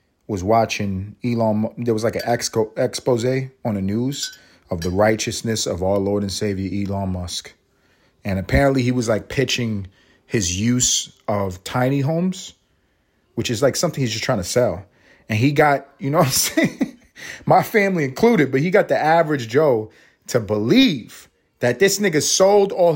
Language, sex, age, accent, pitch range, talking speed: English, male, 30-49, American, 105-160 Hz, 170 wpm